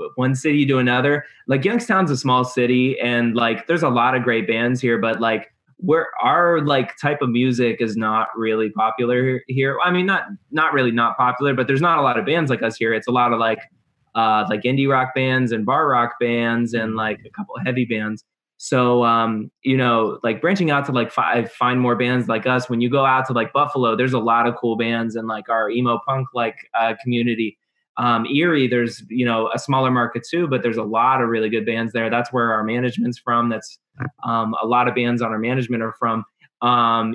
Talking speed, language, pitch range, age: 225 wpm, English, 115-130 Hz, 20-39